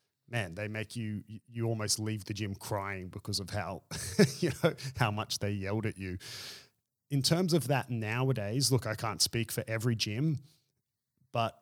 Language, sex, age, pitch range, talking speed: English, male, 30-49, 110-140 Hz, 175 wpm